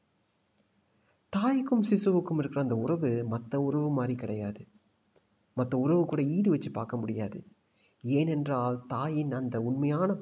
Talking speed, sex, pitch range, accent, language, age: 110 wpm, male, 115-150 Hz, native, Tamil, 30-49